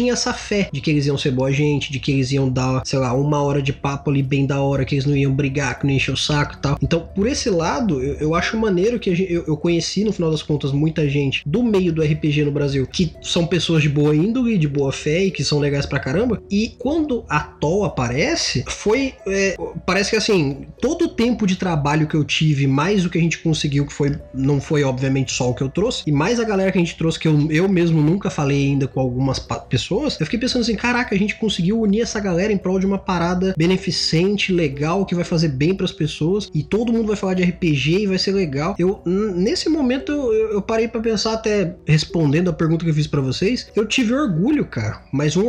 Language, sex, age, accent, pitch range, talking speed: Portuguese, male, 20-39, Brazilian, 145-200 Hz, 250 wpm